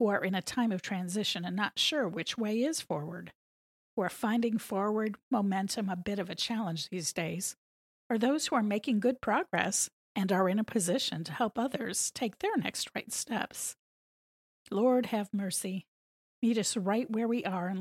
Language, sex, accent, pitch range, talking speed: English, female, American, 190-245 Hz, 190 wpm